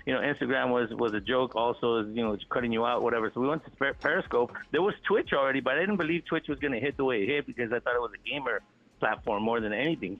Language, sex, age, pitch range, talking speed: English, male, 50-69, 115-155 Hz, 275 wpm